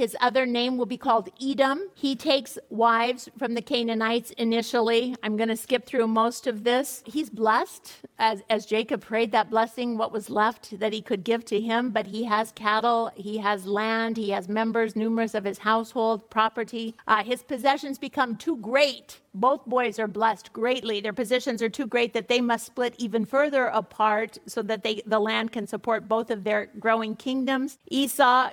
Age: 50-69